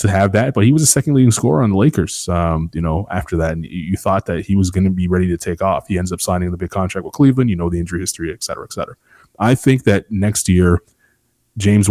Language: English